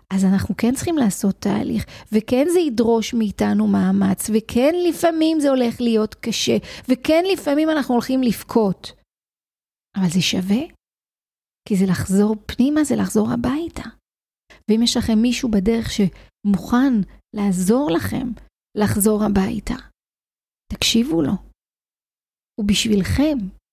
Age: 40-59